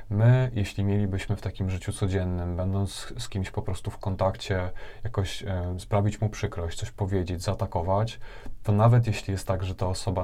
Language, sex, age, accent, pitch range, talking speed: Polish, male, 20-39, native, 95-105 Hz, 170 wpm